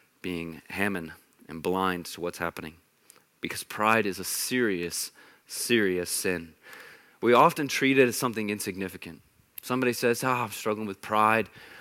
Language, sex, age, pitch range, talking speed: English, male, 30-49, 105-150 Hz, 140 wpm